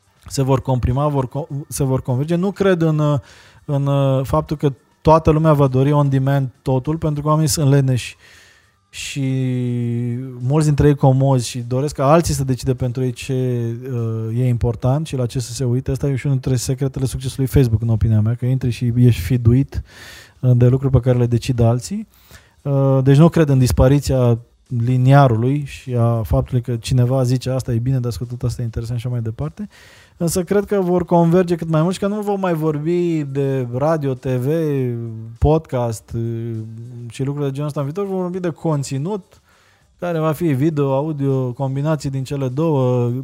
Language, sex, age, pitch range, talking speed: Romanian, male, 20-39, 120-145 Hz, 190 wpm